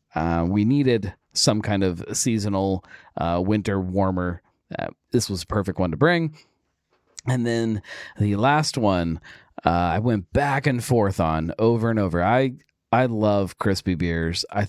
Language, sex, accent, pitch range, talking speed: English, male, American, 90-120 Hz, 160 wpm